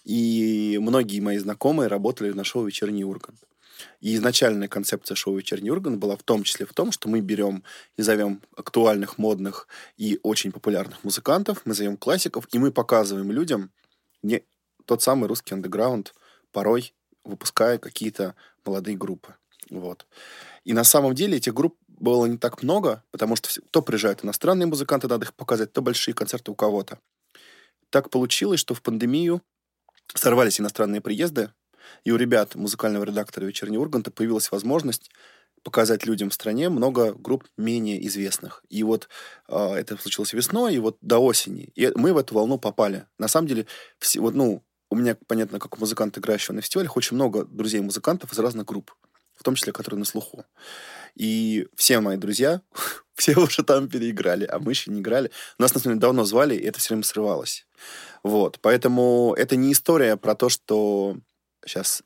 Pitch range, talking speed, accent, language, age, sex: 105-120 Hz, 165 wpm, native, Russian, 20-39, male